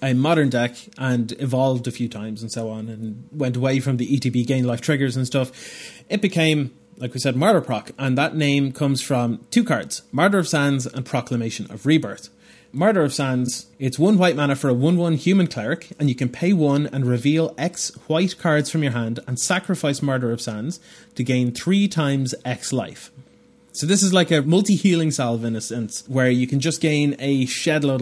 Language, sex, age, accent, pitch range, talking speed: English, male, 30-49, Irish, 125-155 Hz, 210 wpm